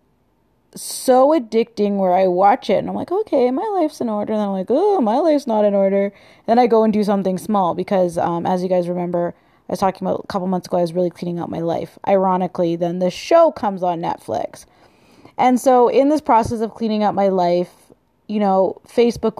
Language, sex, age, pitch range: English, female, 20-39, 180-215 Hz